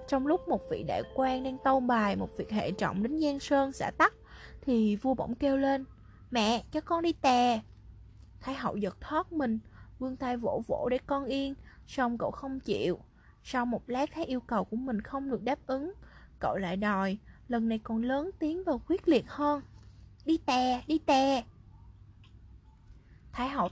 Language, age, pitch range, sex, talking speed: Vietnamese, 20-39, 225-285 Hz, female, 185 wpm